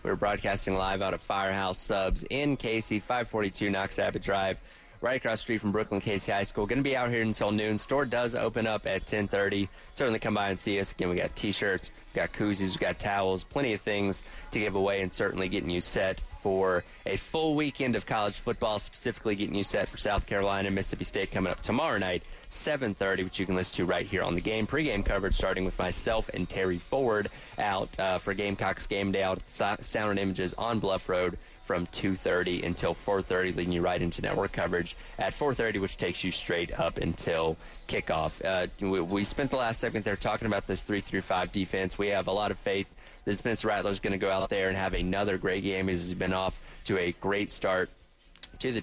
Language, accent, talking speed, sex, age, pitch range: English, American, 215 wpm, male, 20-39, 95-105 Hz